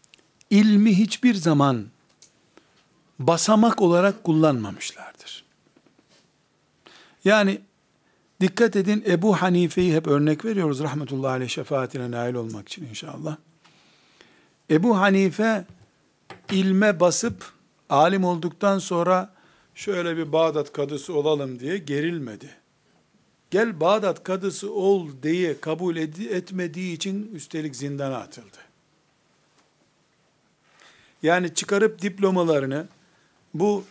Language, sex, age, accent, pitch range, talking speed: Turkish, male, 60-79, native, 150-190 Hz, 90 wpm